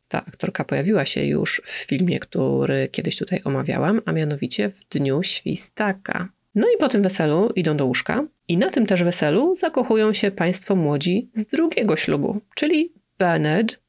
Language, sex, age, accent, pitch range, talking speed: Polish, female, 30-49, native, 155-230 Hz, 165 wpm